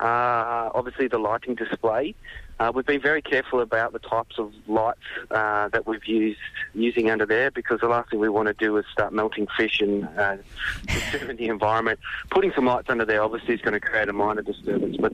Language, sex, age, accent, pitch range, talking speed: English, male, 20-39, Australian, 105-125 Hz, 205 wpm